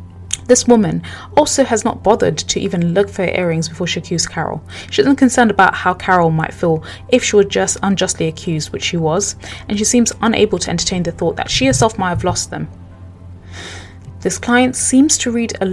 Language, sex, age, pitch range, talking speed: English, female, 20-39, 155-210 Hz, 205 wpm